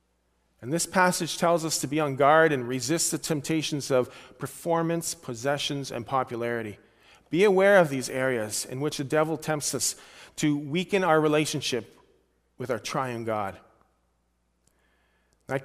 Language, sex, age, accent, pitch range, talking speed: English, male, 40-59, American, 125-175 Hz, 145 wpm